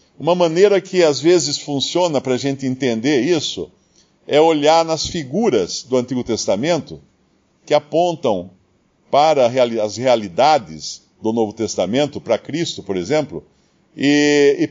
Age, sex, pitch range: 50-69, male, 125-165 Hz